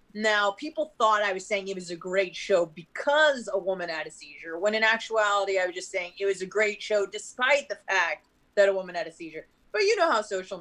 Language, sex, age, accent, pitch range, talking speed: English, female, 30-49, American, 170-215 Hz, 245 wpm